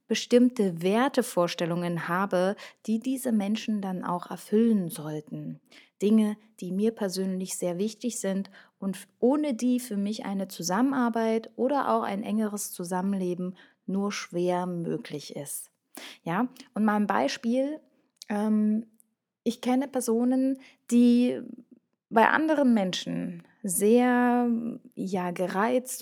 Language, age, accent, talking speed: German, 20-39, German, 110 wpm